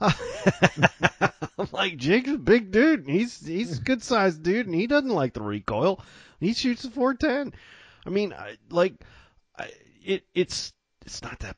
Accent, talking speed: American, 170 wpm